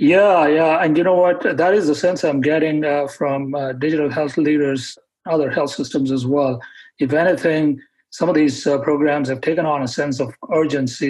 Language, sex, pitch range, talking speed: English, male, 135-150 Hz, 200 wpm